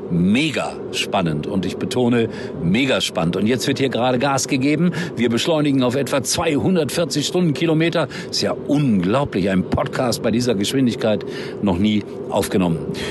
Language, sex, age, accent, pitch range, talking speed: German, male, 50-69, German, 115-155 Hz, 140 wpm